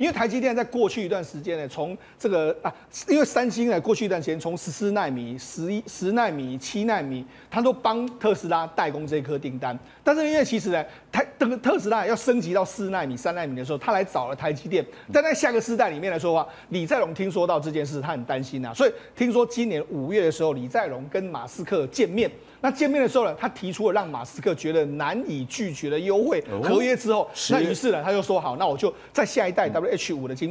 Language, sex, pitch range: Chinese, male, 160-240 Hz